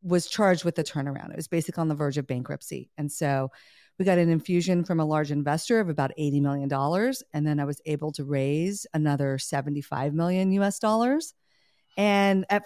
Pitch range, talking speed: 155-210 Hz, 195 wpm